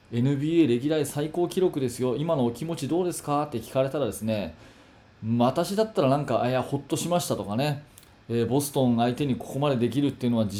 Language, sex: Japanese, male